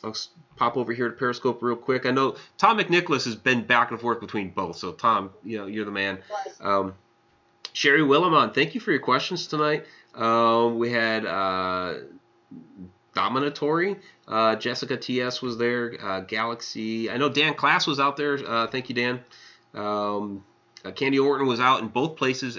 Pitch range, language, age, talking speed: 95-125 Hz, English, 30-49, 180 wpm